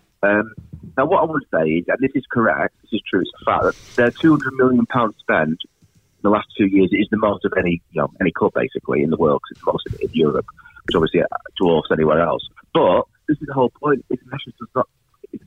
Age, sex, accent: 30-49, male, British